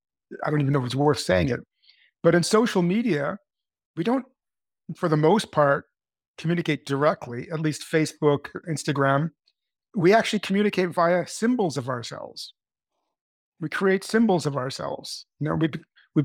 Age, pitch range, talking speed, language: 50-69, 145-180 Hz, 150 wpm, English